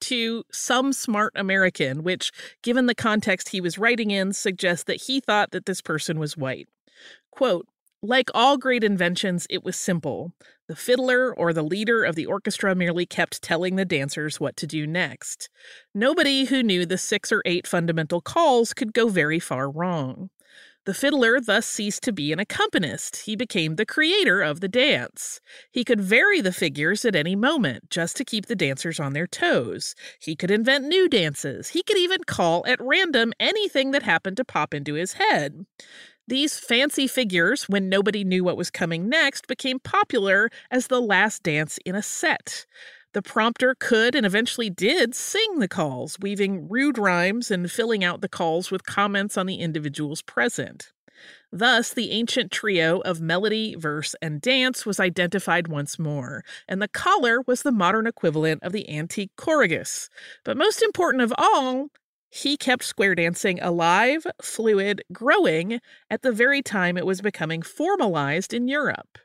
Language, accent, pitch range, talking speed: English, American, 175-255 Hz, 170 wpm